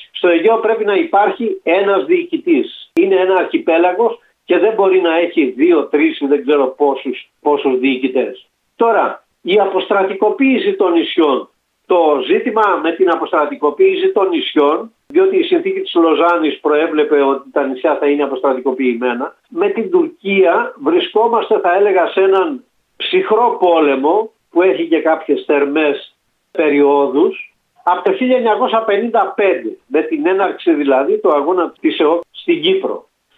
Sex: male